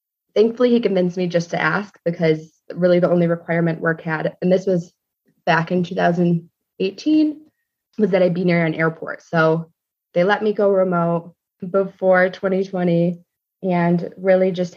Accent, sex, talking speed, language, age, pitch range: American, female, 155 wpm, English, 20-39, 165-180 Hz